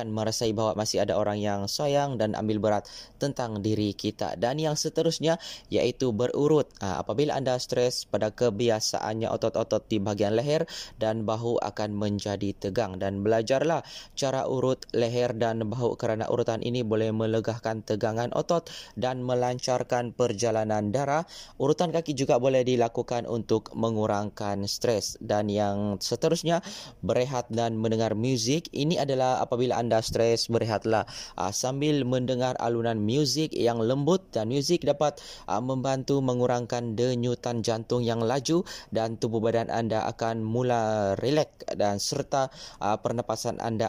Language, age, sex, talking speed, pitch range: Malay, 20-39, male, 135 wpm, 110-130 Hz